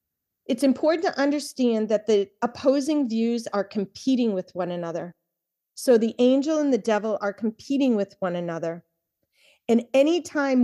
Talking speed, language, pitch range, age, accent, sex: 145 wpm, English, 195-255 Hz, 40-59, American, female